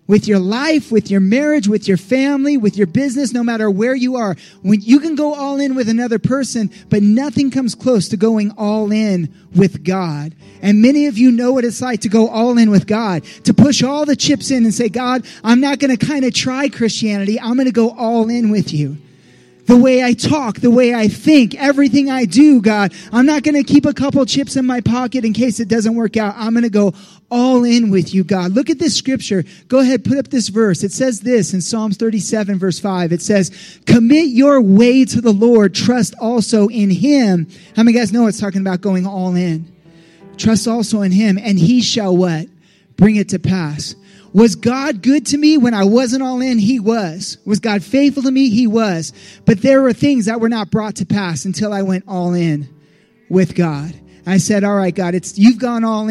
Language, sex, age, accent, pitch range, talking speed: English, male, 30-49, American, 190-250 Hz, 225 wpm